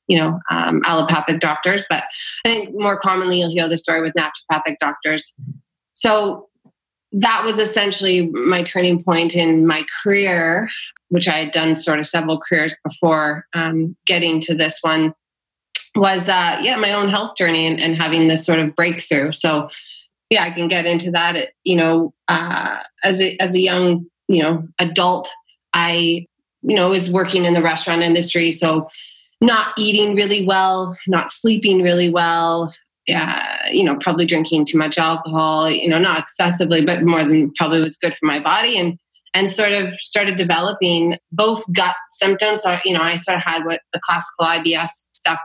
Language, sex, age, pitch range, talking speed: English, female, 30-49, 160-190 Hz, 175 wpm